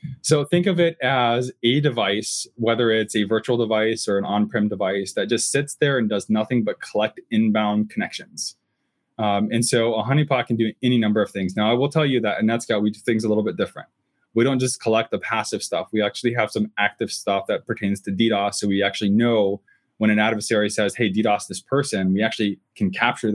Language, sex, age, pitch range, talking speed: English, male, 20-39, 105-125 Hz, 220 wpm